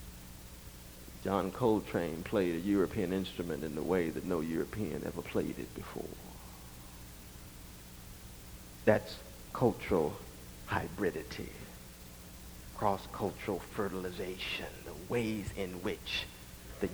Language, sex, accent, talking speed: English, male, American, 90 wpm